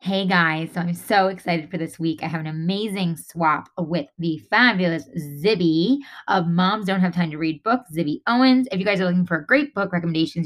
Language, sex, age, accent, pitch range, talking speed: English, female, 20-39, American, 170-230 Hz, 220 wpm